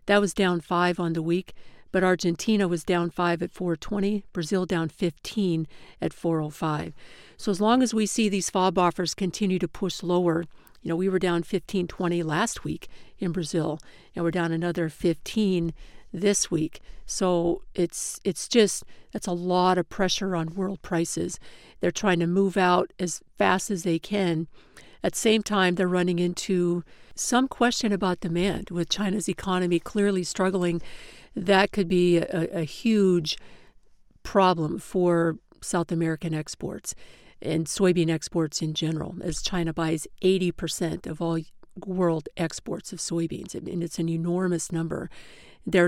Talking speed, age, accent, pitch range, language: 155 wpm, 50-69, American, 170-190 Hz, English